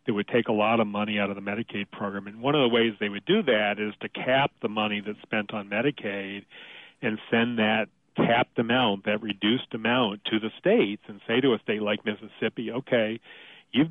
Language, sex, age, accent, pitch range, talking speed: English, male, 40-59, American, 105-120 Hz, 215 wpm